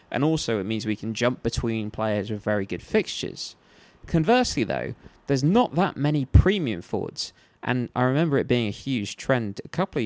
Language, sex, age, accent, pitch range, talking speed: English, male, 20-39, British, 110-155 Hz, 190 wpm